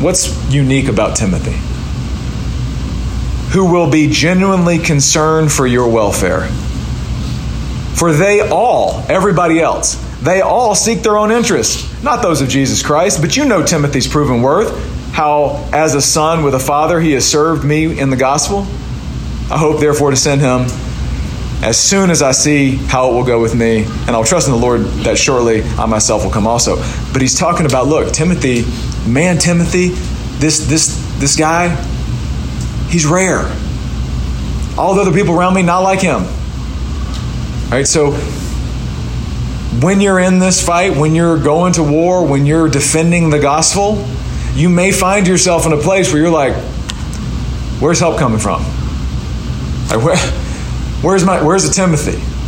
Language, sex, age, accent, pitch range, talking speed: English, male, 40-59, American, 120-170 Hz, 155 wpm